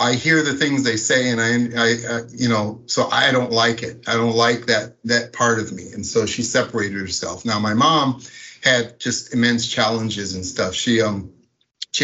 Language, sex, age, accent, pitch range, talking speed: English, male, 50-69, American, 110-125 Hz, 210 wpm